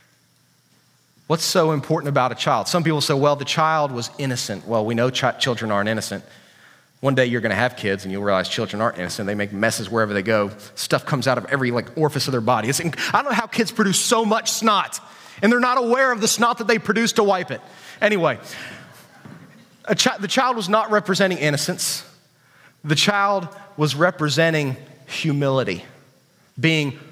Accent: American